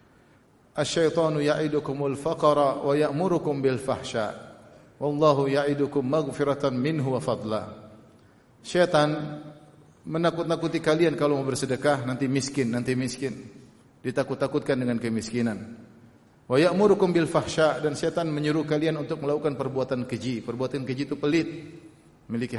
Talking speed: 110 wpm